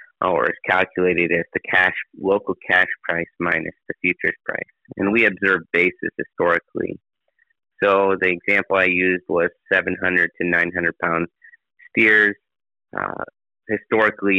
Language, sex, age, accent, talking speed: English, male, 30-49, American, 140 wpm